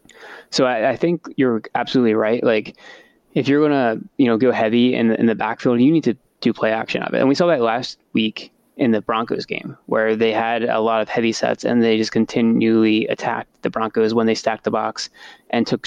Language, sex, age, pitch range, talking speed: English, male, 20-39, 110-125 Hz, 225 wpm